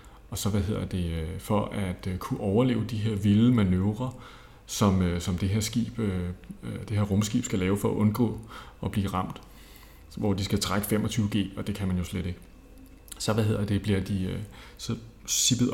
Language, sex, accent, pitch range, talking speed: Danish, male, native, 95-115 Hz, 185 wpm